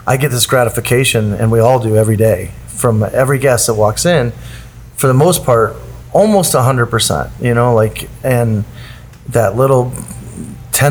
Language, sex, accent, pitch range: English, male, American, 110-125 Hz